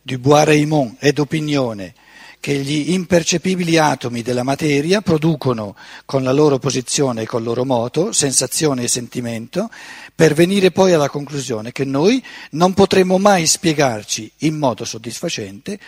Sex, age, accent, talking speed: male, 50-69, native, 145 wpm